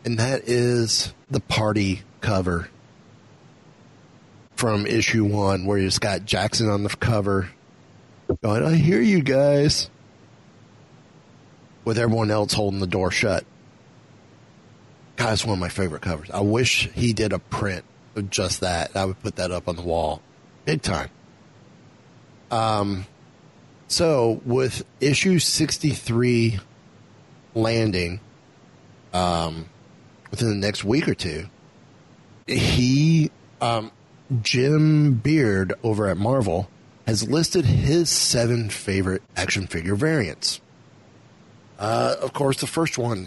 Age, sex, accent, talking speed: 30-49, male, American, 120 wpm